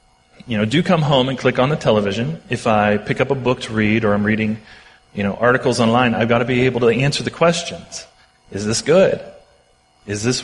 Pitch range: 100-125 Hz